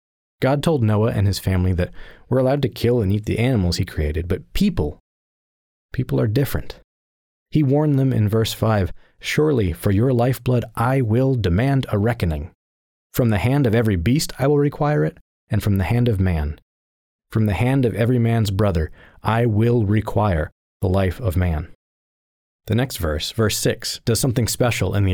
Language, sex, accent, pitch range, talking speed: English, male, American, 90-120 Hz, 185 wpm